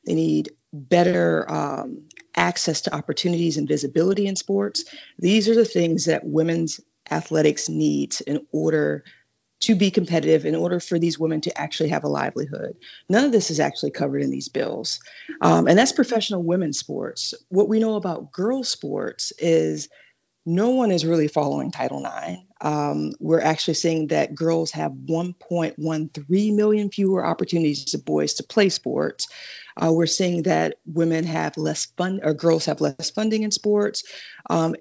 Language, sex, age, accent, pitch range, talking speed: English, female, 40-59, American, 150-190 Hz, 165 wpm